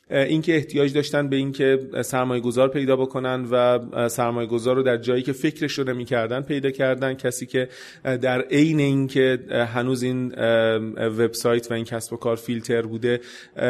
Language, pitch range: Persian, 120-145 Hz